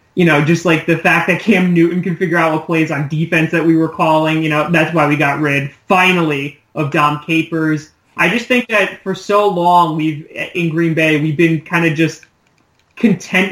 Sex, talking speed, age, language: male, 215 wpm, 30-49, English